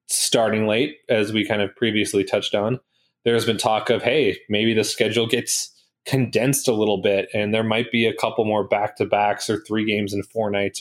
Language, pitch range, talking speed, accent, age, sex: English, 105-125 Hz, 200 wpm, American, 20-39, male